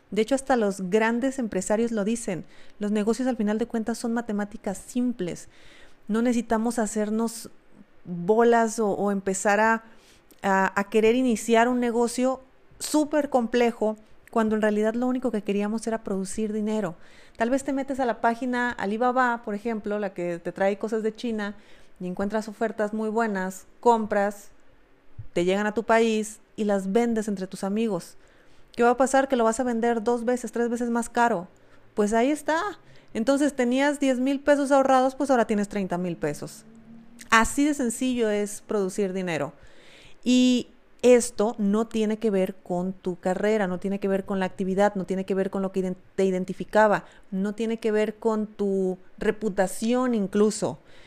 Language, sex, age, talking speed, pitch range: Spanish, female, 30-49, 170 wpm, 200-235 Hz